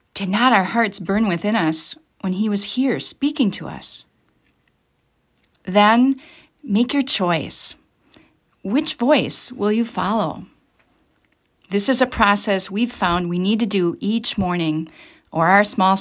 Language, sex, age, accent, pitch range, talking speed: English, female, 40-59, American, 185-240 Hz, 140 wpm